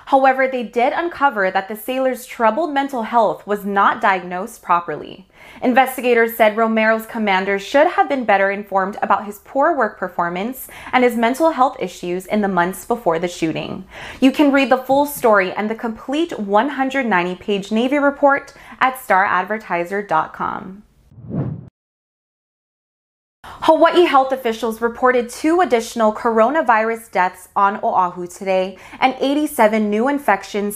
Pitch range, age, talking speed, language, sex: 200-265 Hz, 20-39, 135 wpm, English, female